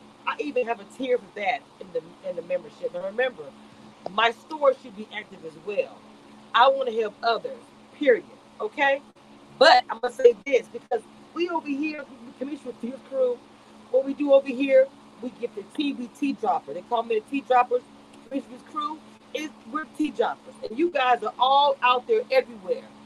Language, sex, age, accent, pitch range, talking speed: English, female, 40-59, American, 220-315 Hz, 185 wpm